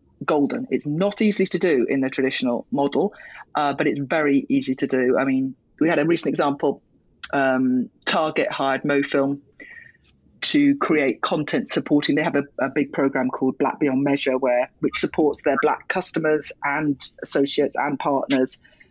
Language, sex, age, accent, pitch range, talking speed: English, female, 40-59, British, 135-170 Hz, 165 wpm